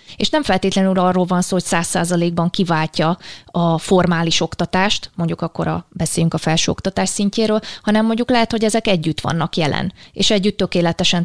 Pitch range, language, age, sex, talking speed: 165-195 Hz, Hungarian, 30-49, female, 165 wpm